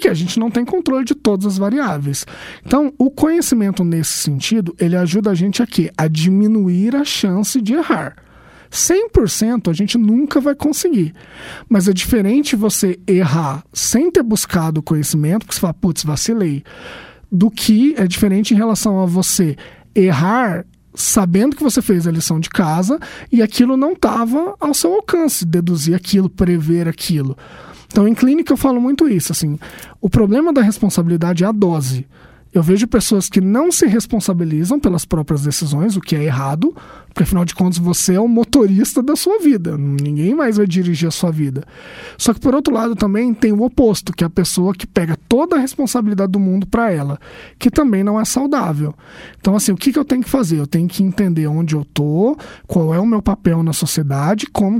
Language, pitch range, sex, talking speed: Portuguese, 170-240 Hz, male, 190 wpm